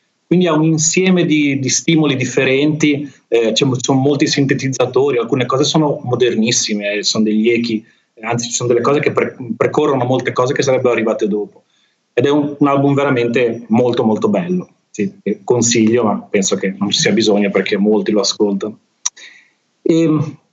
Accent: native